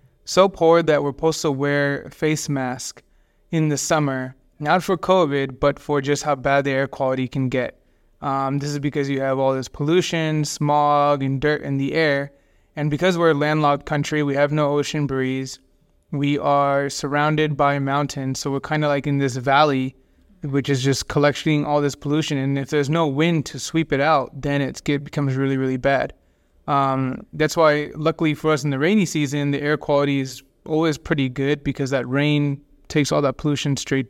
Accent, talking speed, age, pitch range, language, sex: American, 200 wpm, 20-39, 135-150 Hz, English, male